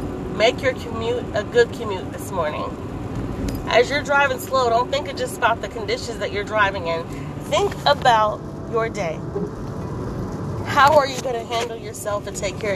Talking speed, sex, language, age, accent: 175 wpm, female, English, 30-49, American